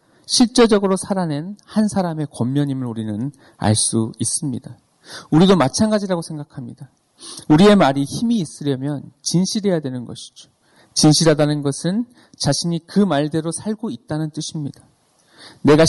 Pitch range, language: 125-170 Hz, Korean